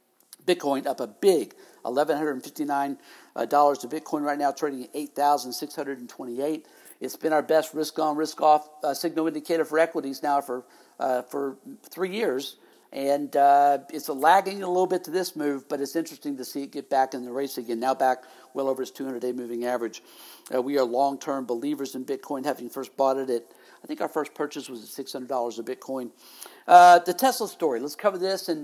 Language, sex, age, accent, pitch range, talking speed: English, male, 60-79, American, 130-160 Hz, 205 wpm